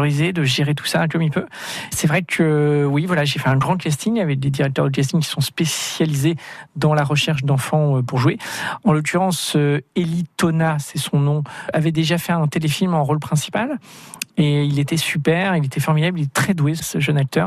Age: 40-59